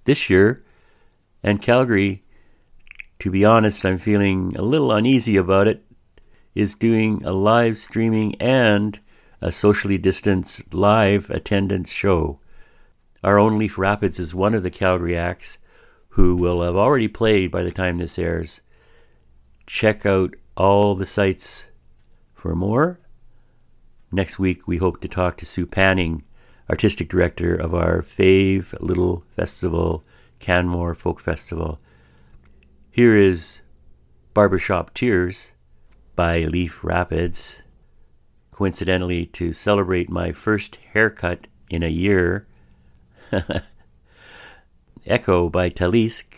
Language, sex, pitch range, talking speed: English, male, 85-105 Hz, 120 wpm